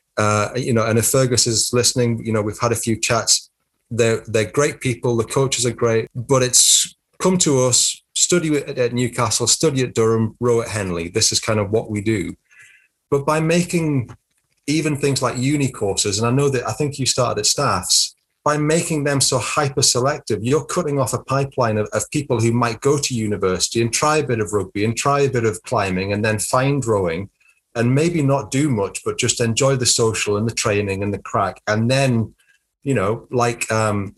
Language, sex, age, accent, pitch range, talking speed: English, male, 30-49, British, 110-130 Hz, 210 wpm